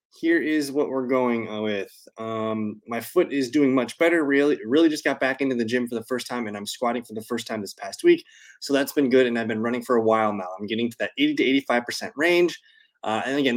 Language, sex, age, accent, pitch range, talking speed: English, male, 20-39, American, 115-155 Hz, 255 wpm